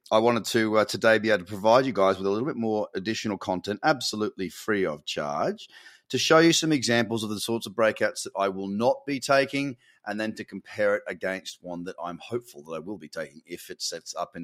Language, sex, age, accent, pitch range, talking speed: English, male, 30-49, Australian, 105-160 Hz, 240 wpm